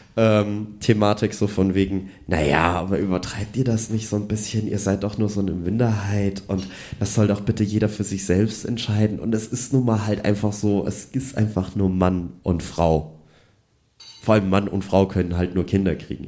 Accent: German